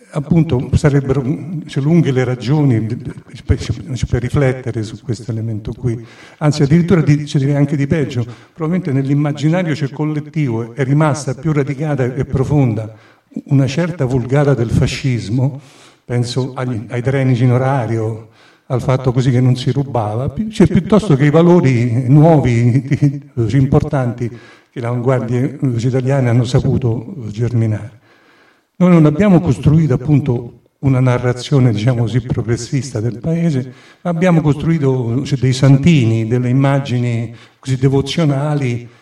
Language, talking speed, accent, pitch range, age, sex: Italian, 125 wpm, native, 125-145 Hz, 50-69, male